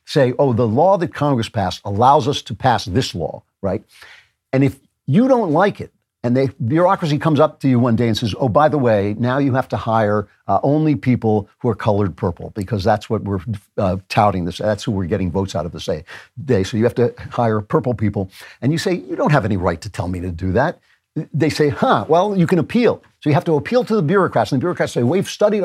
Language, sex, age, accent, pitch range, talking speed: English, male, 50-69, American, 105-155 Hz, 245 wpm